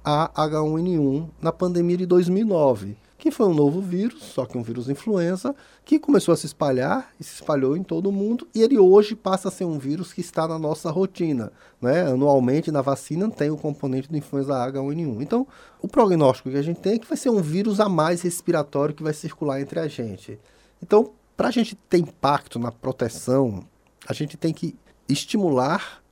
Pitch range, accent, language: 135-180 Hz, Brazilian, Portuguese